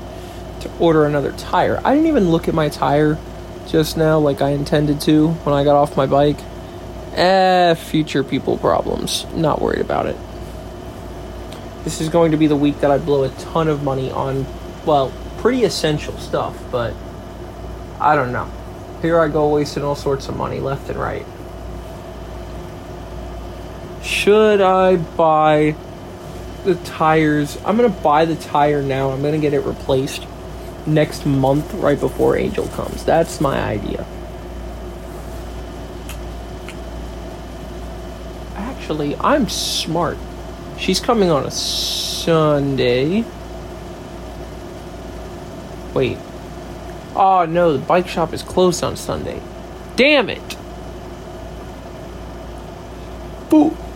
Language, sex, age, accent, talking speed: English, male, 20-39, American, 125 wpm